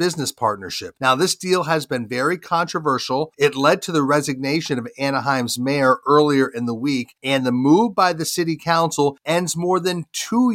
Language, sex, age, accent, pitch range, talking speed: English, male, 40-59, American, 135-170 Hz, 180 wpm